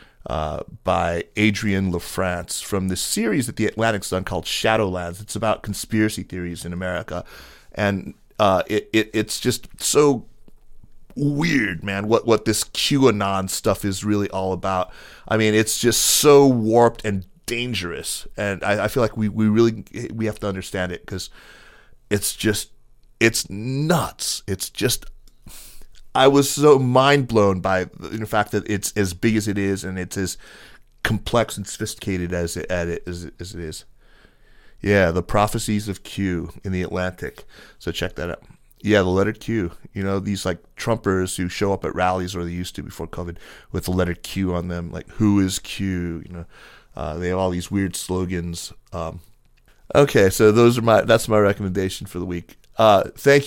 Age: 30-49